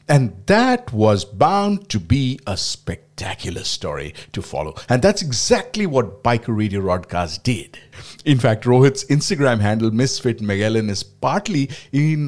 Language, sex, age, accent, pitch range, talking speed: English, male, 50-69, Indian, 100-150 Hz, 140 wpm